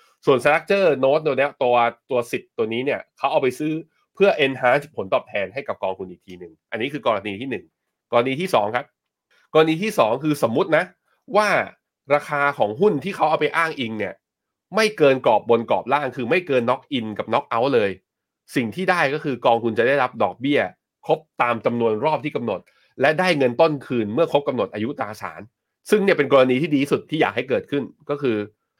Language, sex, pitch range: Thai, male, 125-165 Hz